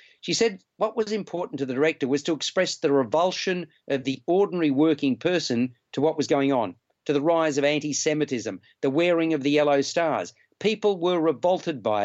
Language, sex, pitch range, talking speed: English, male, 140-180 Hz, 190 wpm